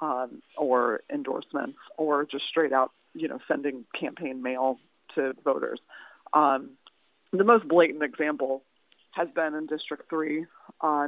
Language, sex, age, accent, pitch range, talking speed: English, female, 30-49, American, 135-160 Hz, 135 wpm